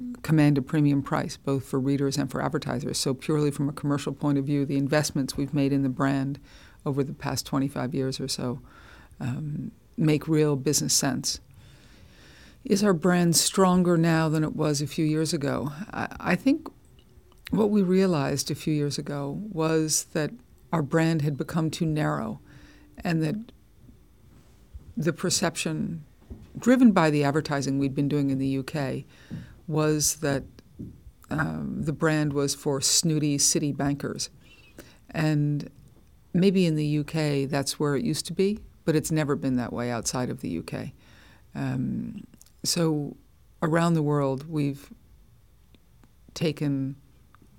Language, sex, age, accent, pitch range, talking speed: Danish, female, 50-69, American, 140-160 Hz, 150 wpm